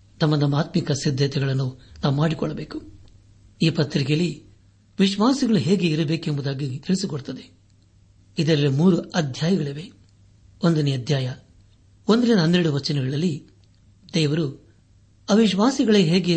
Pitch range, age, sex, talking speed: 100-170 Hz, 60-79, male, 85 wpm